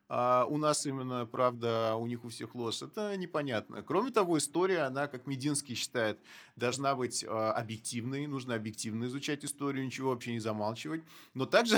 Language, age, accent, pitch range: Russian, 20-39, native, 120-155 Hz